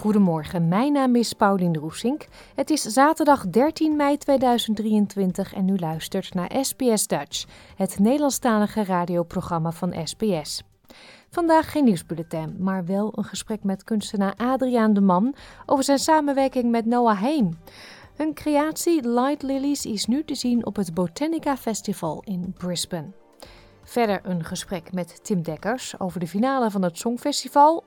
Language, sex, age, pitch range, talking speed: Dutch, female, 30-49, 185-265 Hz, 145 wpm